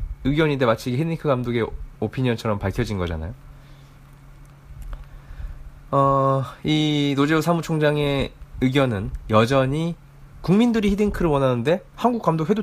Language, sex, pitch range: Korean, male, 110-145 Hz